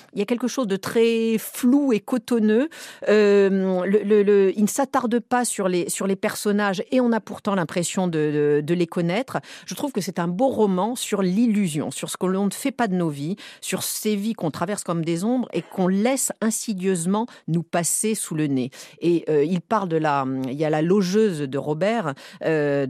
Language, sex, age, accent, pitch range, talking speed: French, female, 40-59, French, 160-215 Hz, 215 wpm